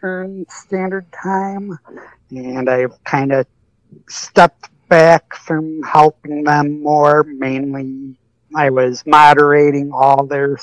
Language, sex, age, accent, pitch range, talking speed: English, male, 60-79, American, 130-150 Hz, 100 wpm